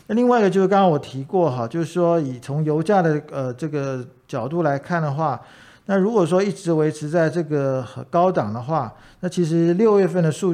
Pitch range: 140-180 Hz